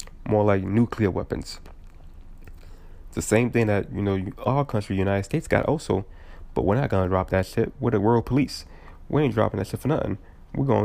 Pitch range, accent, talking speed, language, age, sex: 85-105 Hz, American, 210 wpm, English, 20-39, male